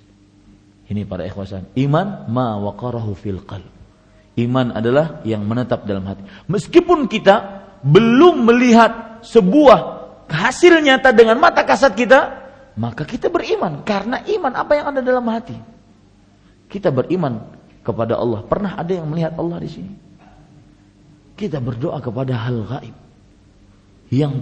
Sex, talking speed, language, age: male, 125 wpm, Malay, 50-69